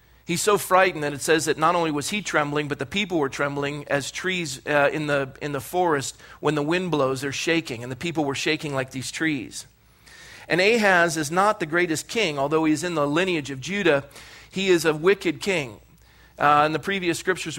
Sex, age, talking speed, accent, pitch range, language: male, 40-59, 215 wpm, American, 135-165 Hz, English